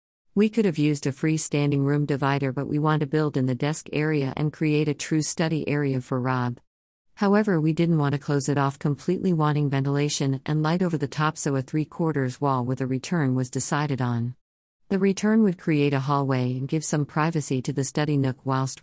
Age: 50-69